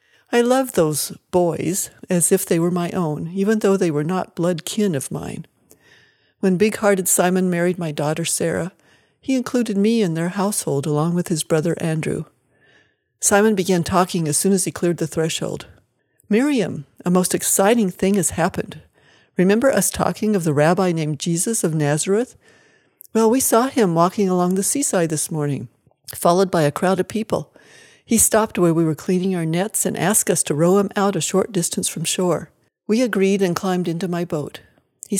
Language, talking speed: English, 185 wpm